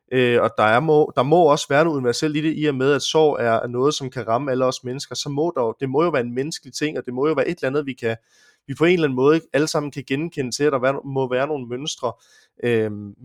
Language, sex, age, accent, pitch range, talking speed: Danish, male, 20-39, native, 120-145 Hz, 290 wpm